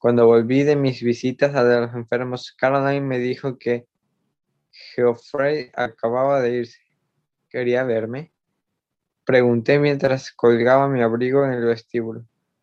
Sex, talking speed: male, 125 wpm